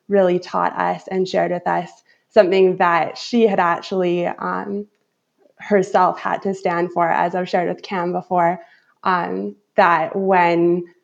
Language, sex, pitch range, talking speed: English, female, 170-200 Hz, 145 wpm